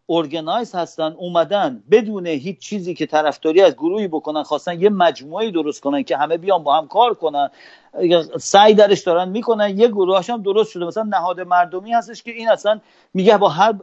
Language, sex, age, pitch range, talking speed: Persian, male, 50-69, 175-235 Hz, 180 wpm